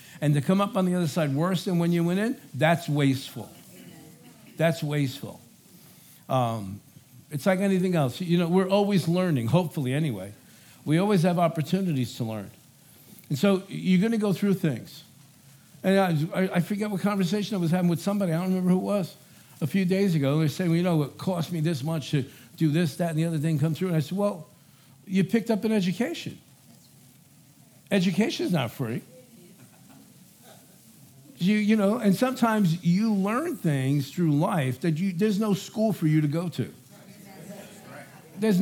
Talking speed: 185 wpm